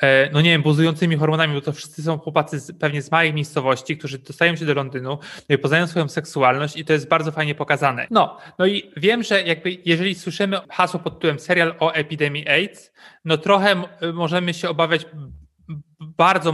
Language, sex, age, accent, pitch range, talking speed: Polish, male, 30-49, native, 145-165 Hz, 185 wpm